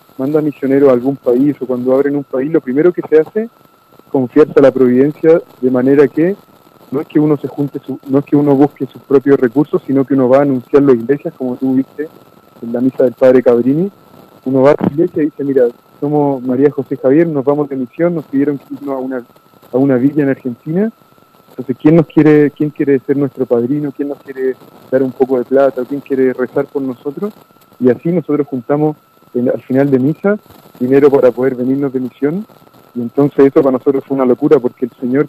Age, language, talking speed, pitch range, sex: 20-39, Spanish, 220 wpm, 130-150 Hz, male